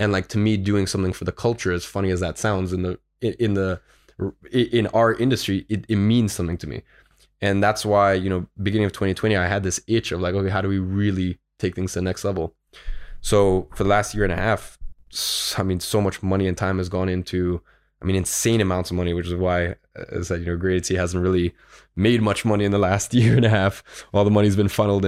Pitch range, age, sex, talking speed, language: 90-105 Hz, 20-39, male, 245 wpm, English